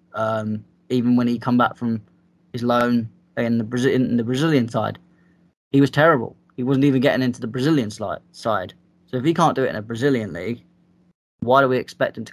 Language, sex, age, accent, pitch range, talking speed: English, male, 20-39, British, 115-135 Hz, 215 wpm